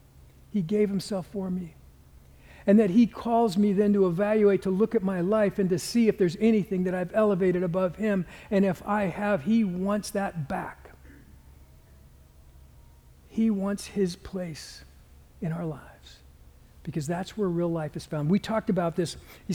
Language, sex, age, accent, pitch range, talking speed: English, male, 60-79, American, 135-185 Hz, 170 wpm